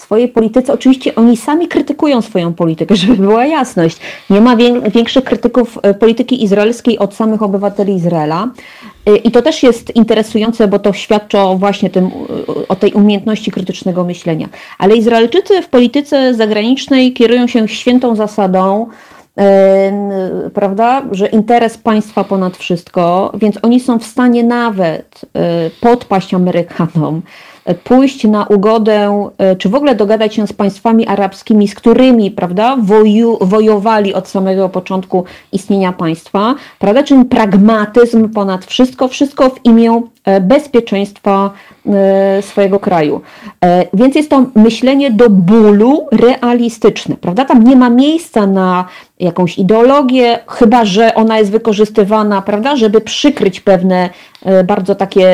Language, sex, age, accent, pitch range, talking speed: Polish, female, 30-49, native, 195-240 Hz, 120 wpm